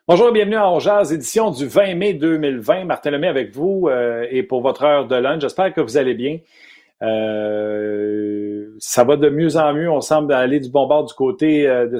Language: French